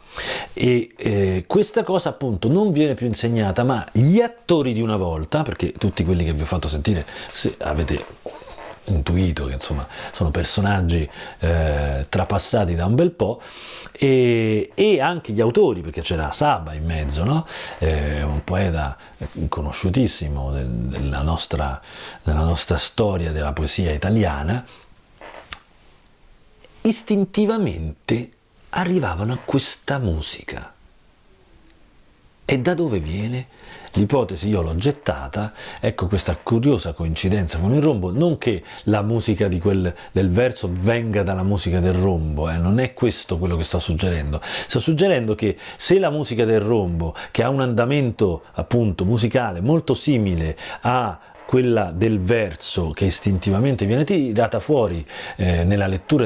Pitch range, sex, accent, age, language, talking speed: 85-125 Hz, male, native, 40-59, Italian, 135 wpm